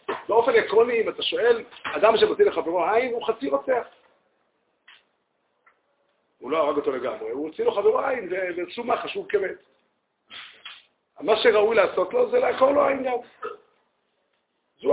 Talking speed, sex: 145 wpm, male